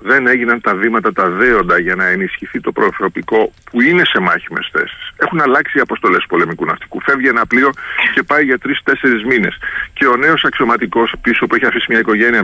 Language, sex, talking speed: Greek, male, 195 wpm